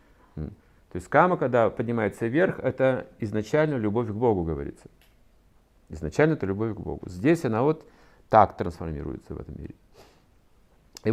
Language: Russian